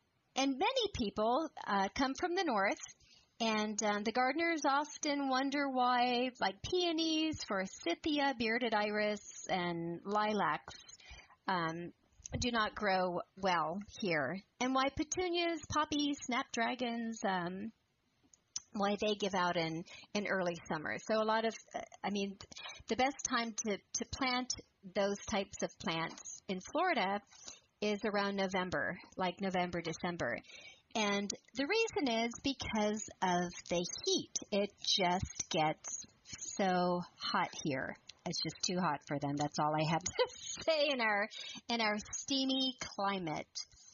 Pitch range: 185-265 Hz